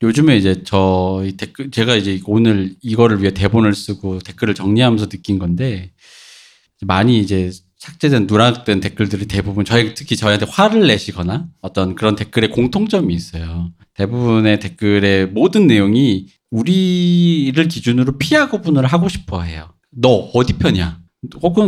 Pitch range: 100-155 Hz